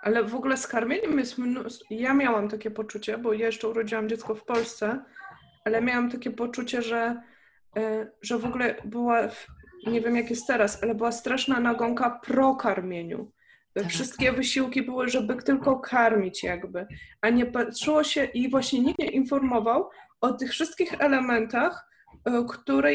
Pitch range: 230-270 Hz